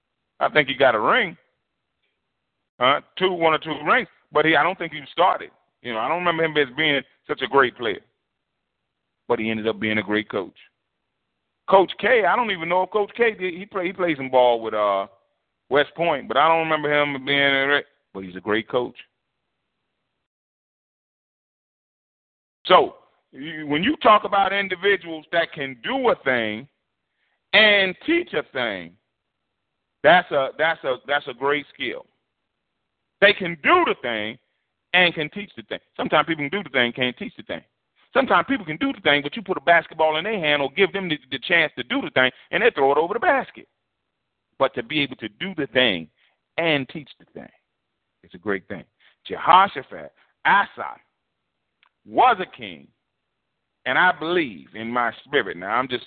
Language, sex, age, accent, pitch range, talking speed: English, male, 40-59, American, 125-180 Hz, 185 wpm